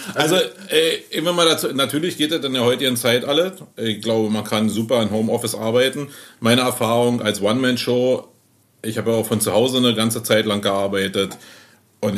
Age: 40-59